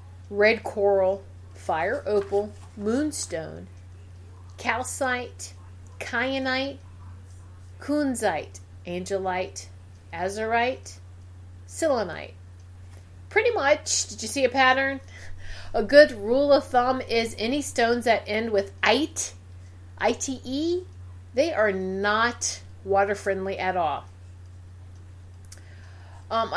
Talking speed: 90 wpm